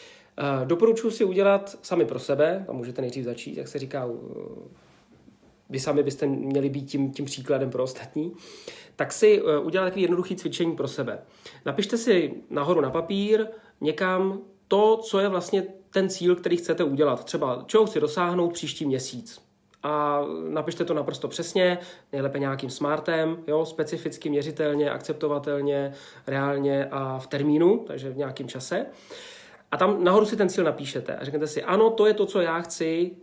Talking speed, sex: 160 wpm, male